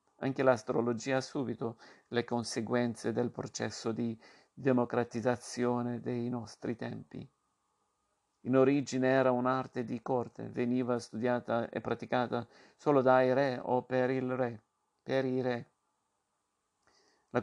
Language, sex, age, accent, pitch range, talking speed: Italian, male, 50-69, native, 120-130 Hz, 115 wpm